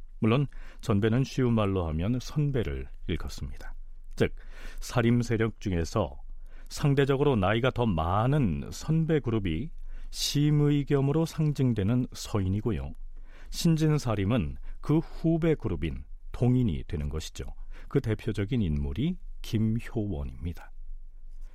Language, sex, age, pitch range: Korean, male, 40-59, 95-145 Hz